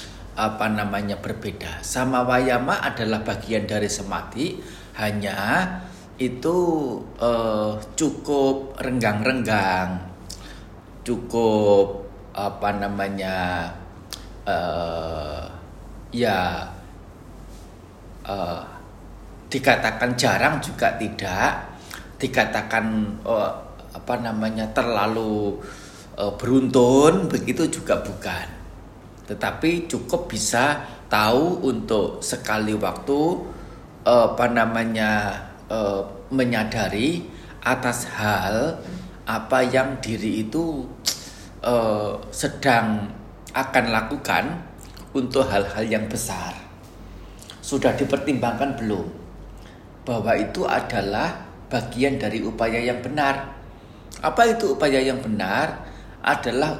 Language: Indonesian